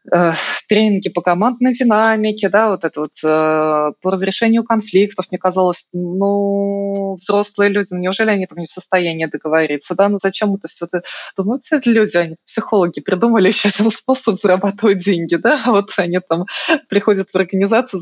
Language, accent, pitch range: Russian, native, 170-210 Hz